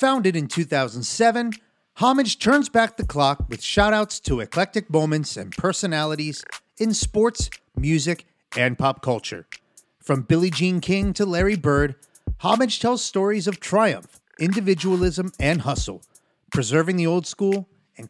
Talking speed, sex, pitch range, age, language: 135 wpm, male, 145-195 Hz, 30-49, English